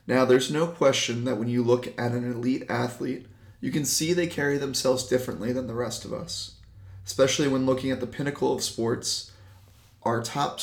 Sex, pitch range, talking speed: male, 115-135 Hz, 190 wpm